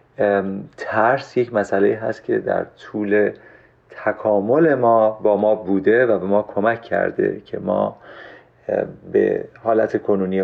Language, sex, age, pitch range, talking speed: Persian, male, 40-59, 105-125 Hz, 125 wpm